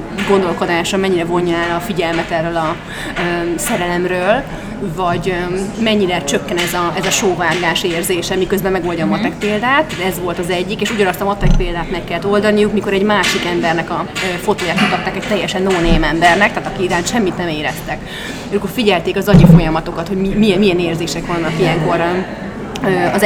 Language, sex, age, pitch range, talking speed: Hungarian, female, 30-49, 170-195 Hz, 170 wpm